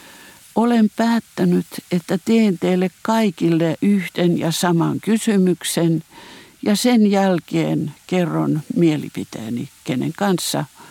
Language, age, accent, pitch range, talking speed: Finnish, 60-79, native, 170-210 Hz, 95 wpm